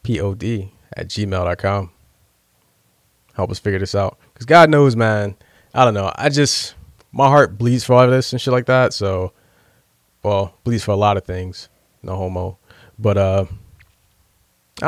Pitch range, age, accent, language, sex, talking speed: 100-120 Hz, 20-39, American, English, male, 165 wpm